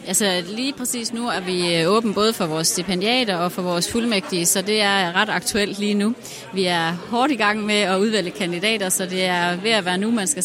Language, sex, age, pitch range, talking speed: Danish, female, 30-49, 175-205 Hz, 230 wpm